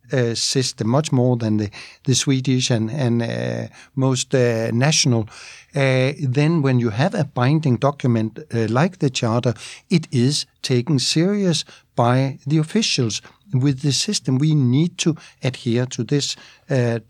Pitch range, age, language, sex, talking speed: 120-145 Hz, 60-79, Swedish, male, 150 wpm